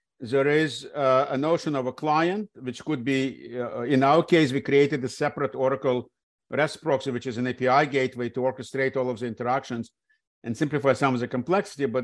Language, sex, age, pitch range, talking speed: English, male, 50-69, 125-150 Hz, 200 wpm